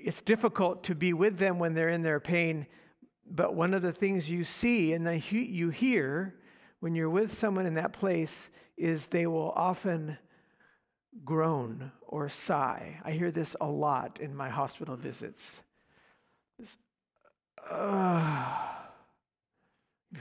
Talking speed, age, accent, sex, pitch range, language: 135 wpm, 60-79, American, male, 170-230 Hz, English